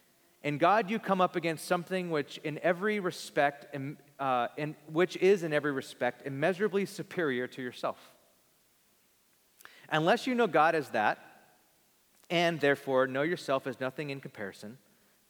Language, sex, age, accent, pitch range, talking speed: English, male, 30-49, American, 125-165 Hz, 140 wpm